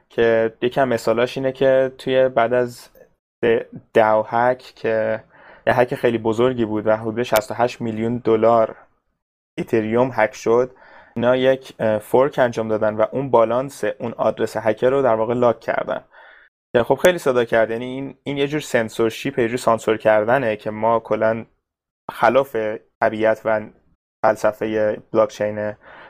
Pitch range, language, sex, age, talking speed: 110-130 Hz, Persian, male, 20-39, 140 wpm